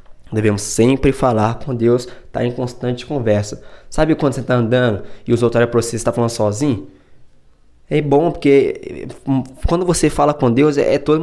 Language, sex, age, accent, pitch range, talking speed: Portuguese, male, 20-39, Brazilian, 115-145 Hz, 180 wpm